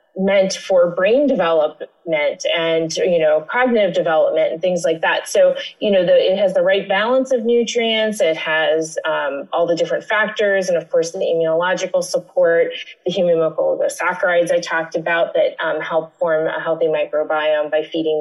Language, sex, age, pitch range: English, female, 30-49, 165-275 Hz